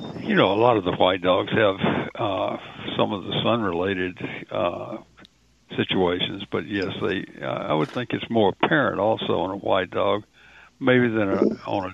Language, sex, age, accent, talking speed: English, male, 60-79, American, 180 wpm